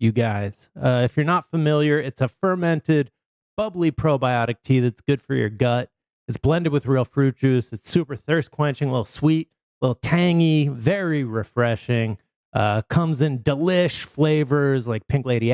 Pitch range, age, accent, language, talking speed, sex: 125-170 Hz, 30-49, American, English, 165 wpm, male